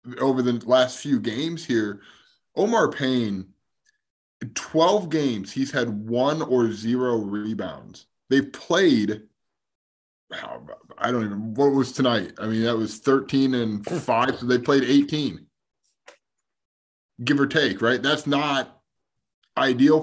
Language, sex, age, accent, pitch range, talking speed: English, male, 20-39, American, 115-140 Hz, 130 wpm